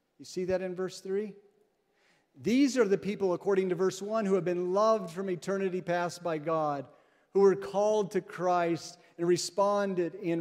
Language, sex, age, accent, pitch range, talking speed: English, male, 40-59, American, 165-200 Hz, 180 wpm